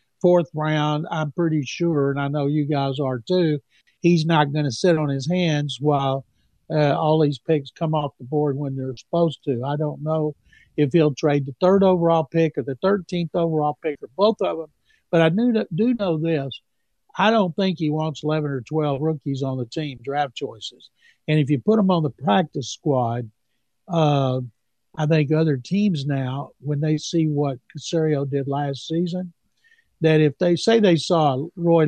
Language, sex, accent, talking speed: English, male, American, 190 wpm